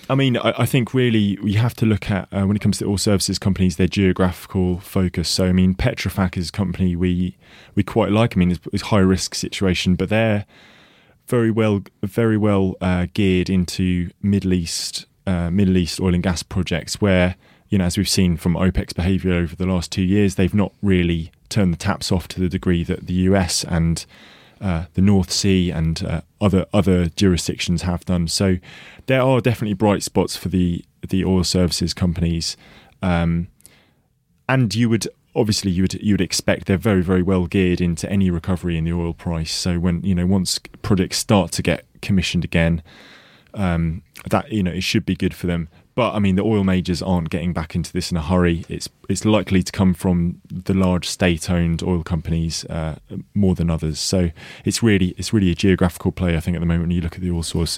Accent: British